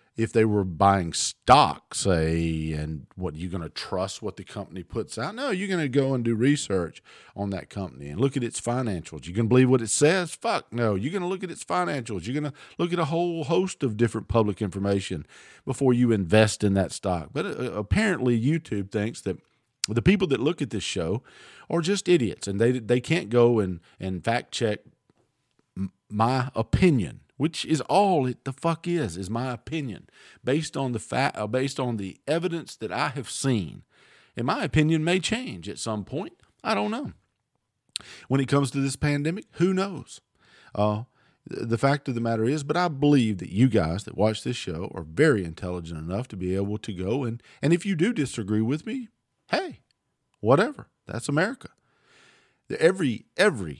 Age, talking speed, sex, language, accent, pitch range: 50-69, 200 wpm, male, English, American, 100-150 Hz